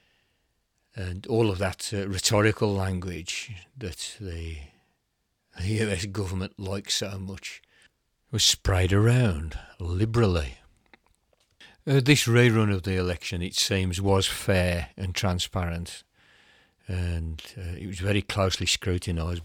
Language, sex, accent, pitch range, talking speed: English, male, British, 90-110 Hz, 115 wpm